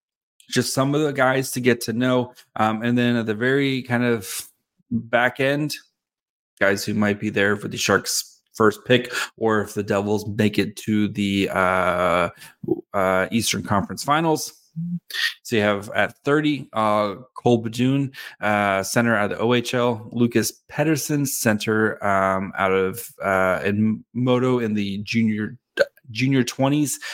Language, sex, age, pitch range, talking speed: English, male, 30-49, 105-135 Hz, 155 wpm